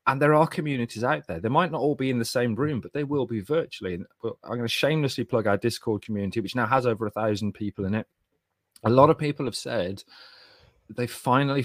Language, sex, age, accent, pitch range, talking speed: English, male, 30-49, British, 105-135 Hz, 235 wpm